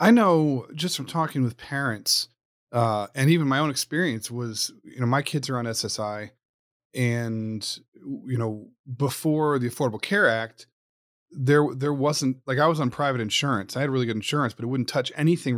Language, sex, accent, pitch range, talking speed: English, male, American, 115-140 Hz, 185 wpm